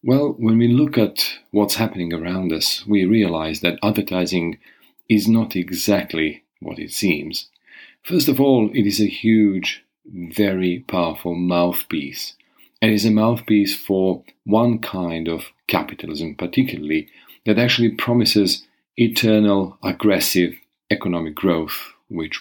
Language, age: English, 40-59